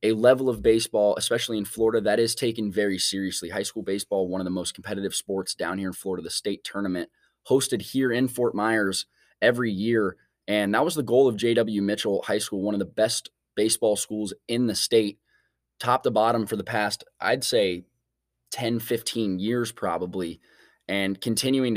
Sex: male